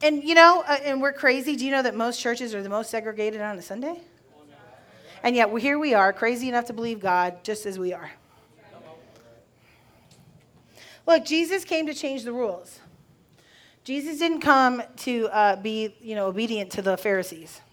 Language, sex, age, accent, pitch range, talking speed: English, female, 30-49, American, 195-270 Hz, 180 wpm